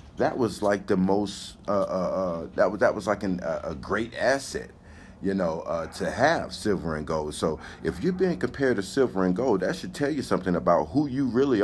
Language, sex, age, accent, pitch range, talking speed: English, male, 50-69, American, 90-140 Hz, 220 wpm